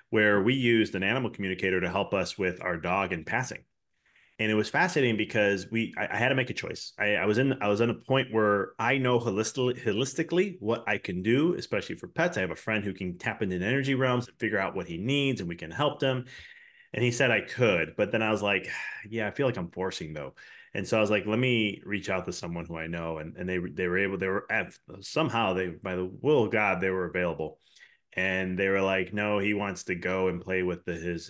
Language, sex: English, male